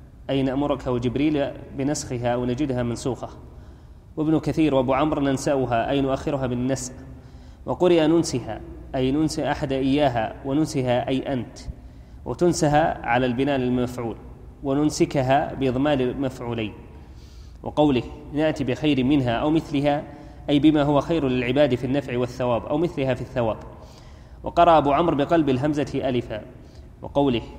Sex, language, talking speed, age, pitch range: male, Arabic, 120 wpm, 20-39, 125-145 Hz